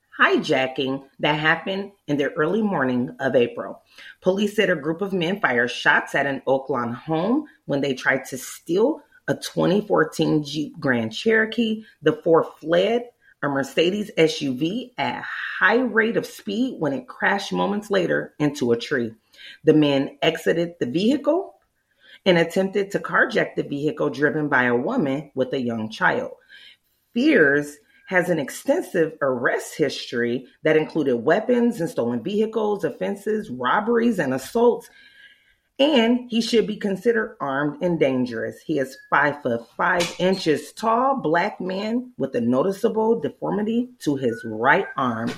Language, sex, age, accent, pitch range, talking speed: English, female, 30-49, American, 135-220 Hz, 145 wpm